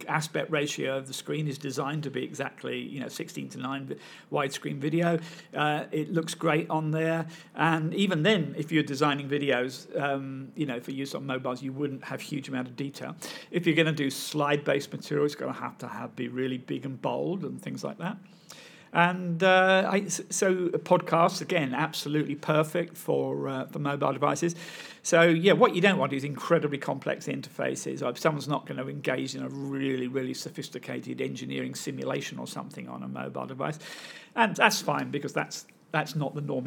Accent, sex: British, male